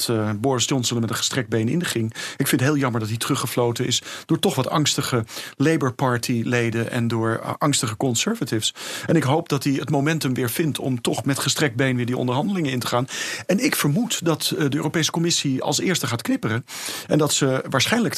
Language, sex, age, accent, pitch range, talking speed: Dutch, male, 40-59, Dutch, 125-160 Hz, 205 wpm